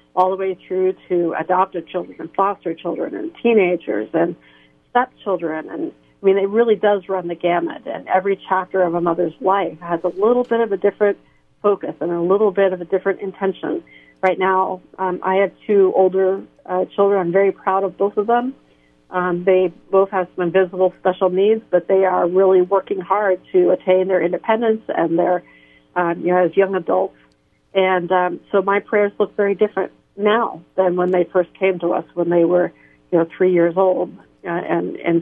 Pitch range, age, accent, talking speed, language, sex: 175-200 Hz, 50-69, American, 195 wpm, English, female